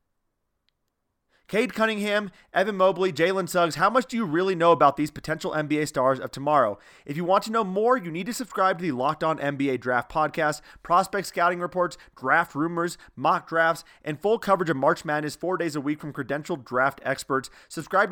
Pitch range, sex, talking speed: 135-175 Hz, male, 190 wpm